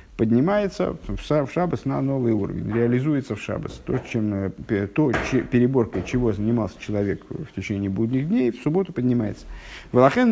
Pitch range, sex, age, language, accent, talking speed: 110-155 Hz, male, 50-69, Russian, native, 145 wpm